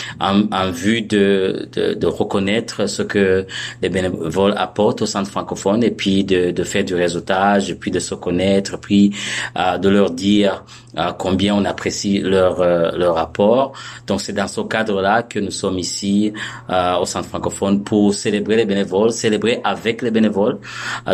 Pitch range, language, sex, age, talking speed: 95-105 Hz, French, male, 30-49, 175 wpm